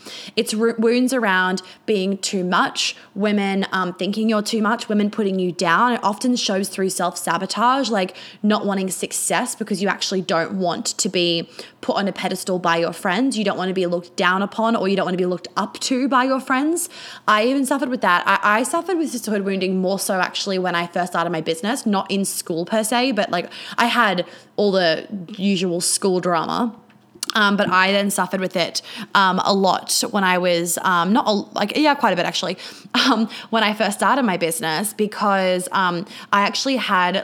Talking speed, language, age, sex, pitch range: 205 wpm, English, 20-39, female, 180-225 Hz